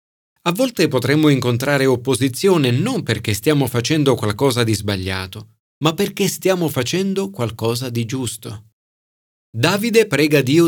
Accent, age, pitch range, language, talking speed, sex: native, 40-59, 110-155 Hz, Italian, 125 wpm, male